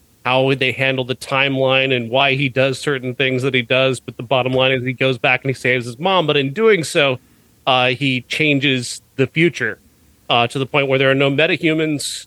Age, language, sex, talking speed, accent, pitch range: 30-49, English, male, 225 wpm, American, 125-160 Hz